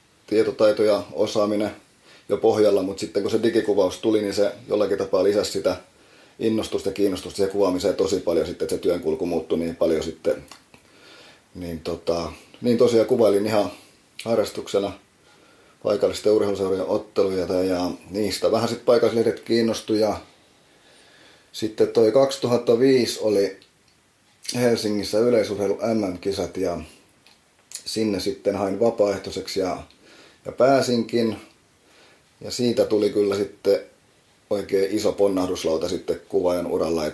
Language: Finnish